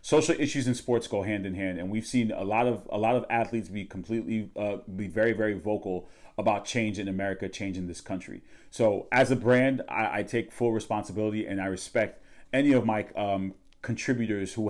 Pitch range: 100-130 Hz